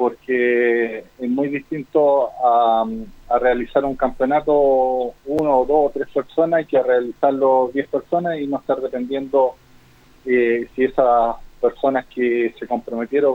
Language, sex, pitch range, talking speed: Spanish, male, 120-140 Hz, 135 wpm